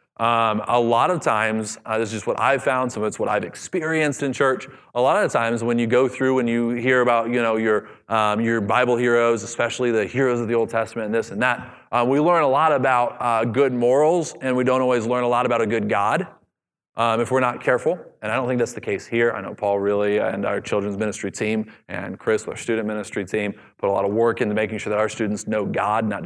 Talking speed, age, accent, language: 255 wpm, 30-49, American, English